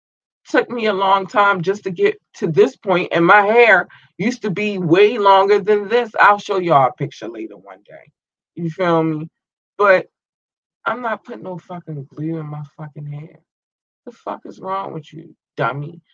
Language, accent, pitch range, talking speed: English, American, 140-195 Hz, 185 wpm